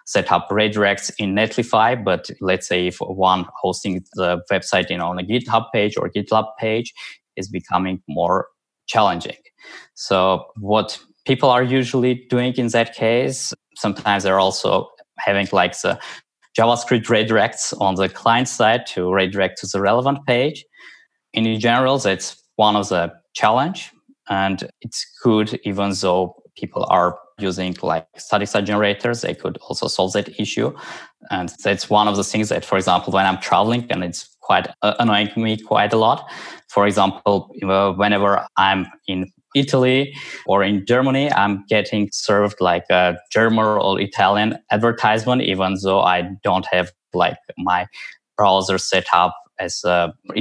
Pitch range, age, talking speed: 95-115 Hz, 20-39, 150 wpm